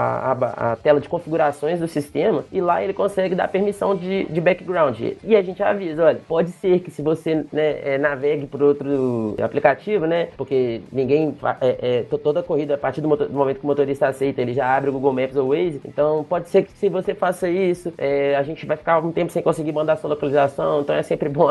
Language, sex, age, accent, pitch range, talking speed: Portuguese, male, 20-39, Brazilian, 140-185 Hz, 230 wpm